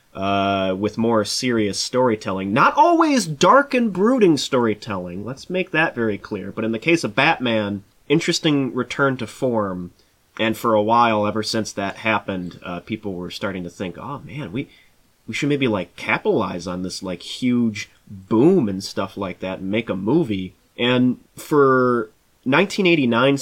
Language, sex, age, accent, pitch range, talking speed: English, male, 30-49, American, 100-140 Hz, 165 wpm